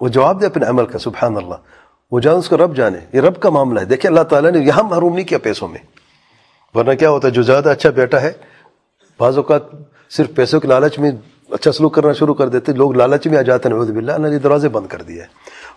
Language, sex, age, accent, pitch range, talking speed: English, male, 40-59, Indian, 125-155 Hz, 225 wpm